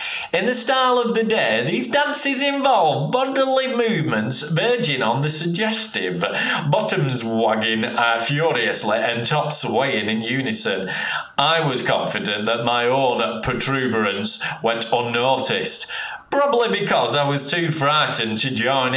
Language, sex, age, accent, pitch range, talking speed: English, male, 30-49, British, 115-185 Hz, 130 wpm